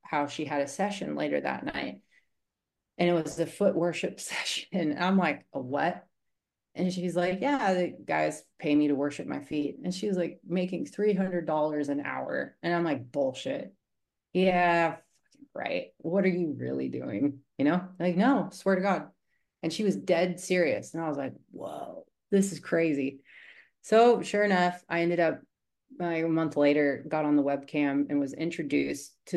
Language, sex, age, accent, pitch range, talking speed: English, female, 30-49, American, 150-190 Hz, 180 wpm